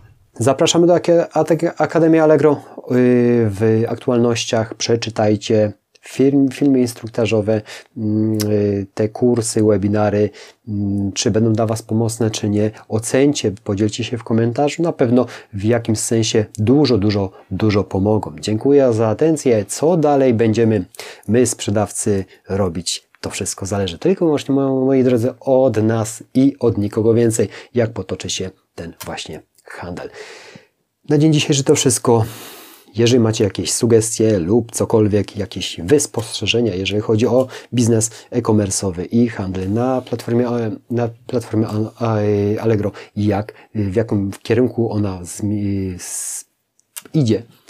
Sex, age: male, 30-49